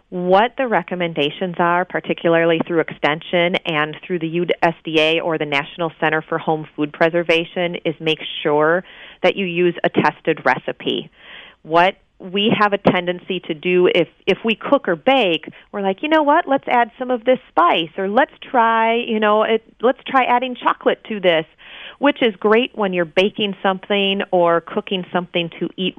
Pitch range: 165-210 Hz